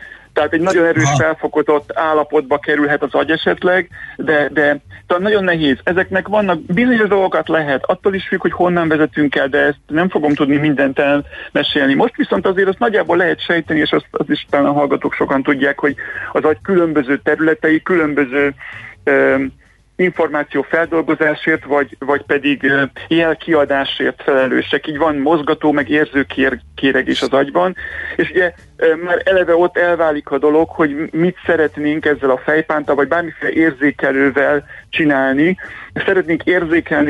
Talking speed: 150 wpm